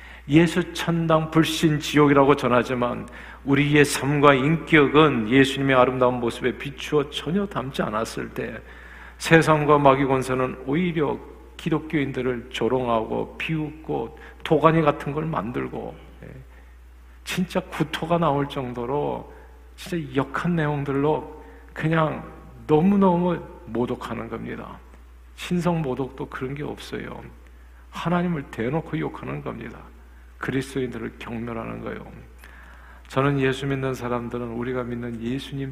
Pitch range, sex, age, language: 120-155 Hz, male, 40-59, Korean